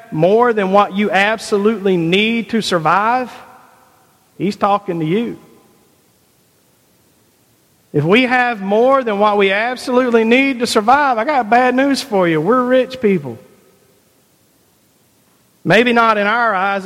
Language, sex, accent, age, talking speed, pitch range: English, male, American, 40-59, 130 wpm, 160-220 Hz